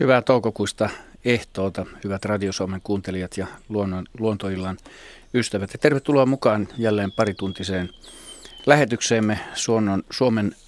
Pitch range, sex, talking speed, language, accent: 90-110 Hz, male, 85 wpm, Finnish, native